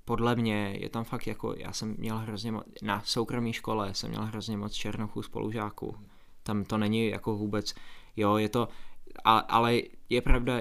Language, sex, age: Czech, male, 20-39